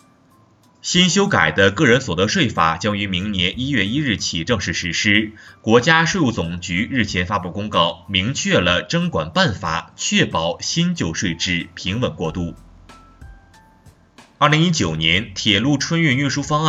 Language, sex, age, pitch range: Chinese, male, 30-49, 90-140 Hz